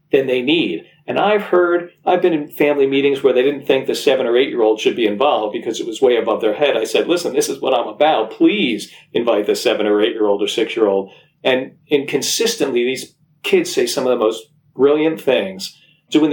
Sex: male